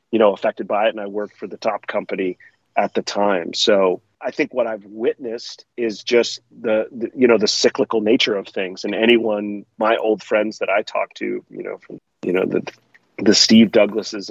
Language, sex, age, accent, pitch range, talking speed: English, male, 30-49, American, 100-110 Hz, 210 wpm